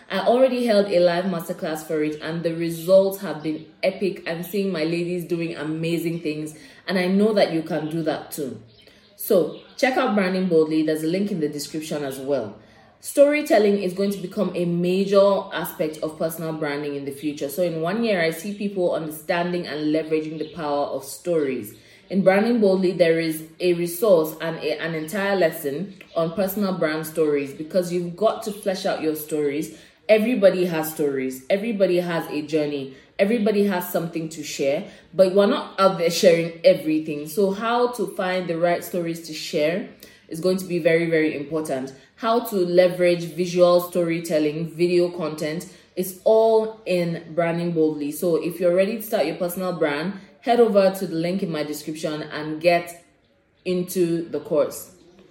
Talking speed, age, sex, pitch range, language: 180 wpm, 20-39, female, 155-190 Hz, English